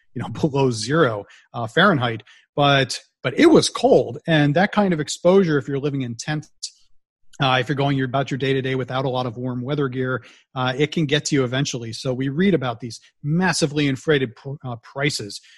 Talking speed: 205 wpm